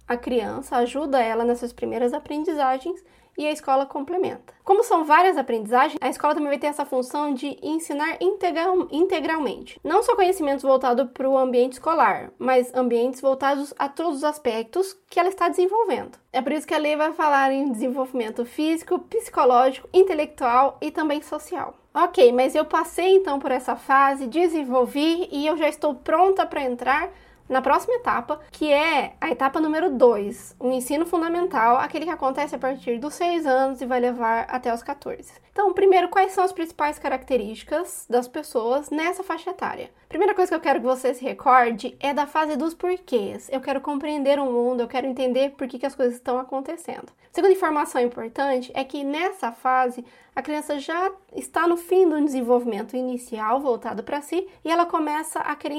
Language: Portuguese